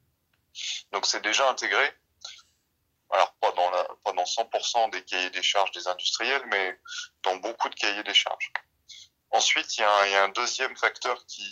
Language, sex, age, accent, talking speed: French, male, 30-49, French, 180 wpm